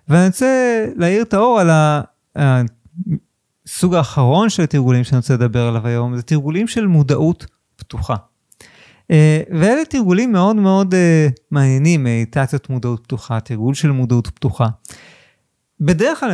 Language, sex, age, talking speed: Hebrew, male, 30-49, 125 wpm